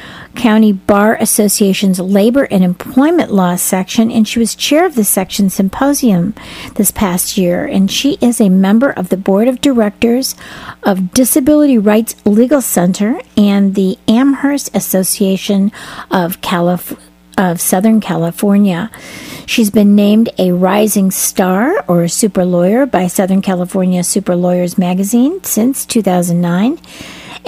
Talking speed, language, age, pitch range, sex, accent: 130 wpm, English, 50-69, 185-235 Hz, female, American